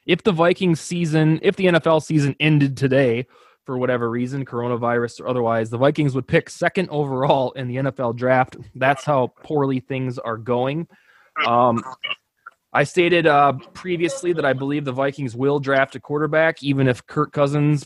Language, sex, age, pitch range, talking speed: English, male, 20-39, 125-160 Hz, 170 wpm